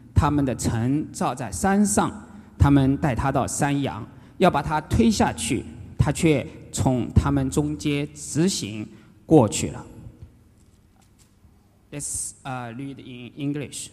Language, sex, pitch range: English, male, 110-150 Hz